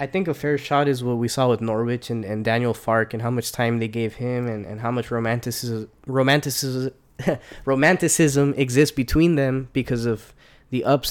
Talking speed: 195 wpm